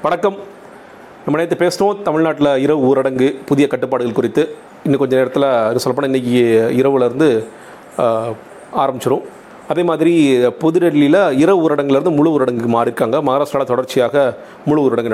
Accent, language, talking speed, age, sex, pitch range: native, Tamil, 115 wpm, 40-59, male, 130-165 Hz